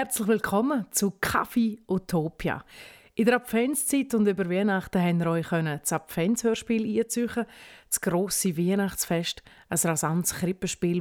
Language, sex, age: German, female, 30-49